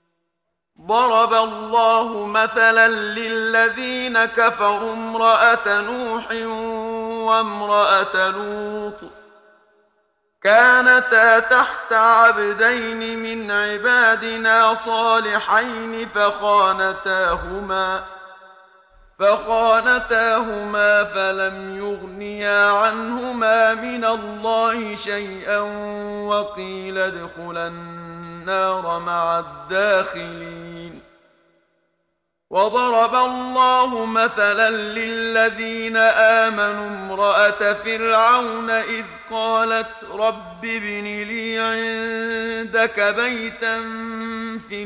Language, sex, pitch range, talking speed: Arabic, male, 195-225 Hz, 55 wpm